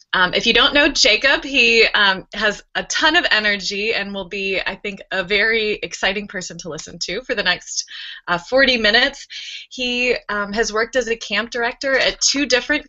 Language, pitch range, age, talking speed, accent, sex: English, 185-240 Hz, 20-39, 195 wpm, American, female